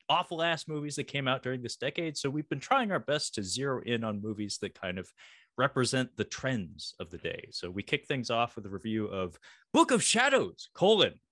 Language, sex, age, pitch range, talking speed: English, male, 30-49, 105-170 Hz, 215 wpm